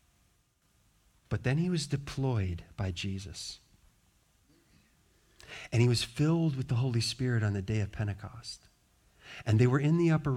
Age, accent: 40-59, American